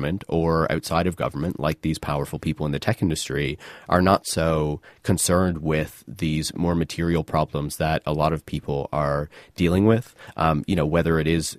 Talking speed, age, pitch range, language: 180 wpm, 30-49, 75-85 Hz, English